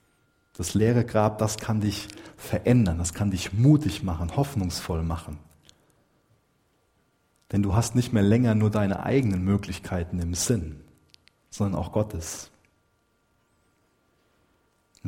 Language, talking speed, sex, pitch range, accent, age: German, 120 wpm, male, 90-110 Hz, German, 40-59